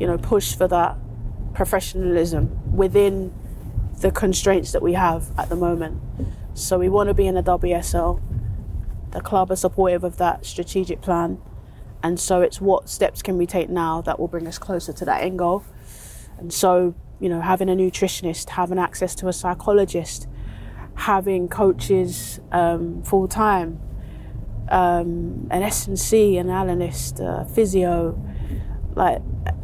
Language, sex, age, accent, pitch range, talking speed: English, female, 30-49, British, 165-195 Hz, 150 wpm